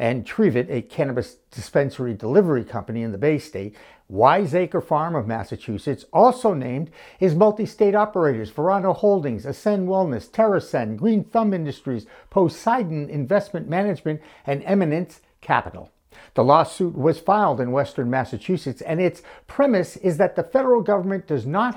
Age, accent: 60-79, American